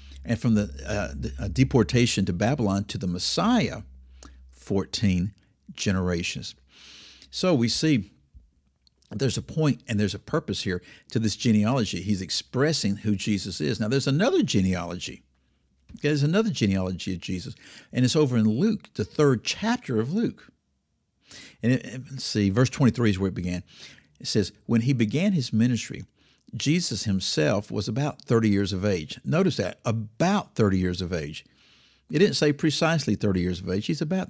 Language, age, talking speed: English, 60-79, 160 wpm